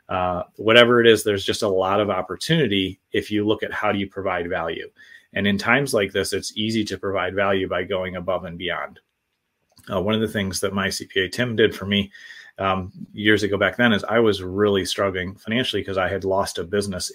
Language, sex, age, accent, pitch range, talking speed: English, male, 30-49, American, 95-110 Hz, 220 wpm